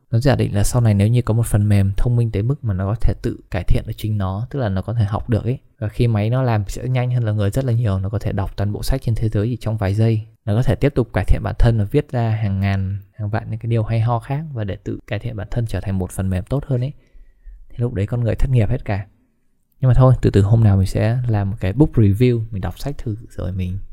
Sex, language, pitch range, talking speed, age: male, Vietnamese, 100-120 Hz, 320 wpm, 20-39